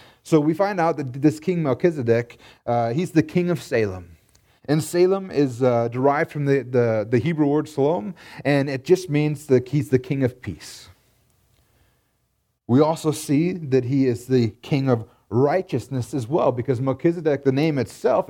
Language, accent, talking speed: English, American, 170 wpm